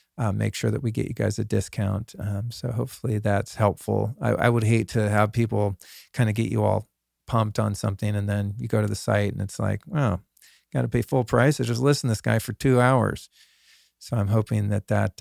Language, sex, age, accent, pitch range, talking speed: English, male, 40-59, American, 105-120 Hz, 240 wpm